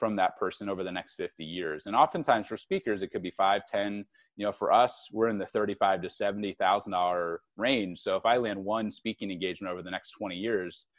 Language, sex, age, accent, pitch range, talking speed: English, male, 30-49, American, 100-130 Hz, 220 wpm